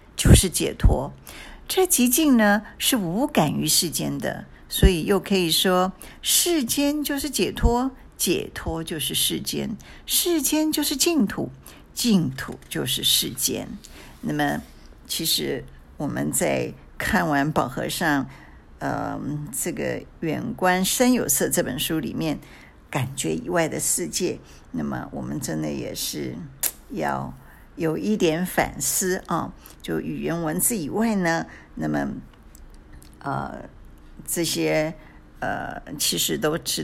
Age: 50-69